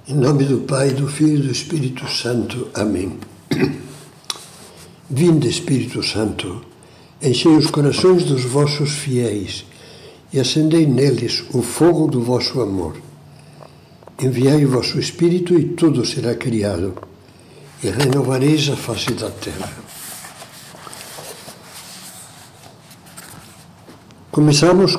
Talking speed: 105 wpm